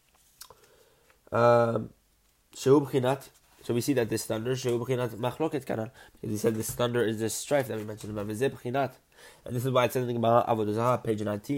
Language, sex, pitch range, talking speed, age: English, male, 110-125 Hz, 160 wpm, 20-39